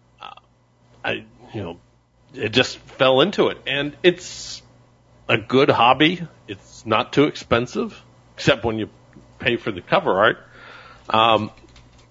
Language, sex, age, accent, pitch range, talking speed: English, male, 40-59, American, 105-130 Hz, 130 wpm